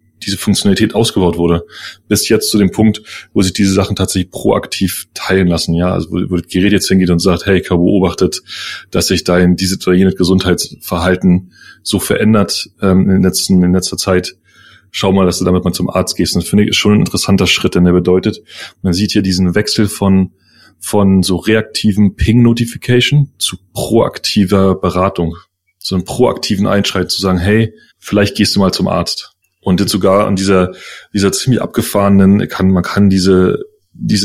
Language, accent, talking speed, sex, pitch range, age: German, German, 180 wpm, male, 90-105 Hz, 30-49